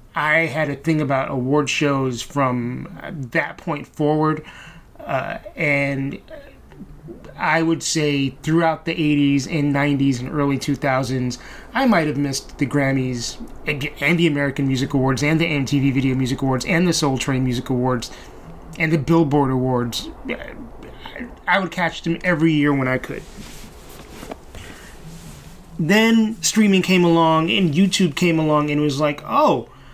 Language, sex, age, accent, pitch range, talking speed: English, male, 30-49, American, 135-170 Hz, 145 wpm